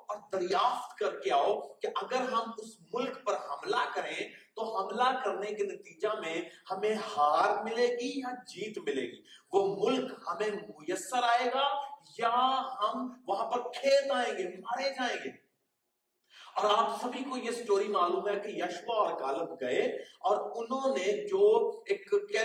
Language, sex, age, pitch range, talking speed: Urdu, male, 40-59, 215-300 Hz, 100 wpm